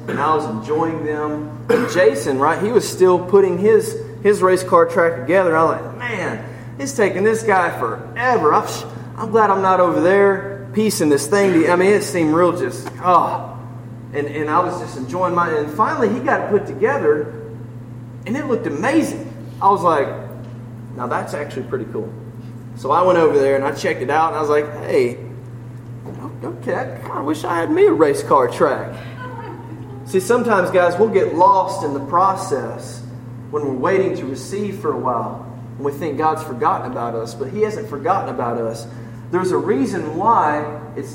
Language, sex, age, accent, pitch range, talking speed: English, male, 20-39, American, 120-185 Hz, 185 wpm